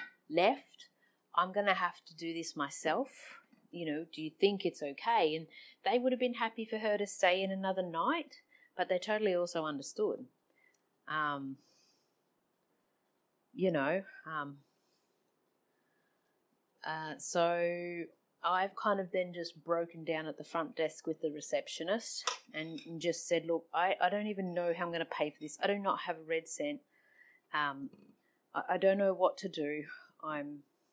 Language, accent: English, Australian